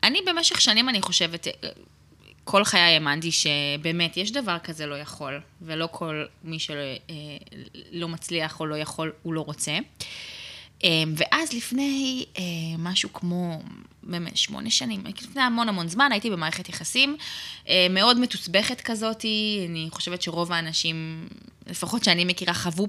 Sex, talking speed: female, 130 wpm